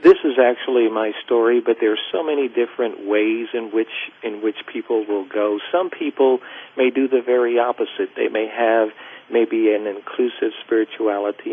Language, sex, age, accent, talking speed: English, male, 50-69, American, 170 wpm